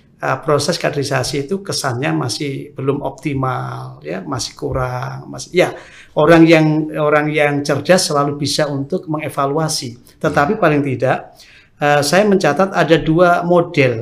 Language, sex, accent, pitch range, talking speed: Indonesian, male, native, 130-160 Hz, 135 wpm